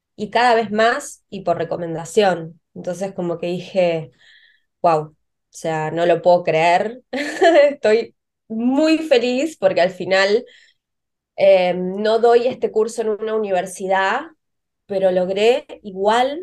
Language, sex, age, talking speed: Spanish, female, 20-39, 130 wpm